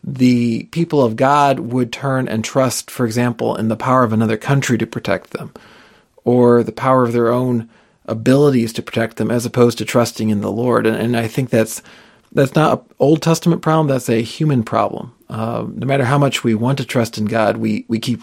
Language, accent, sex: English, American, male